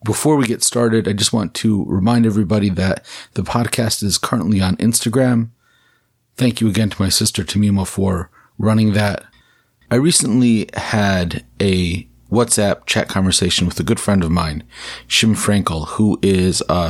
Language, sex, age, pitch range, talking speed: English, male, 30-49, 90-115 Hz, 160 wpm